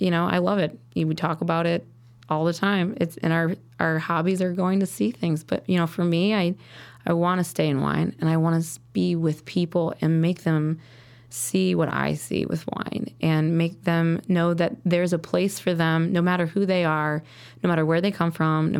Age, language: 20-39, English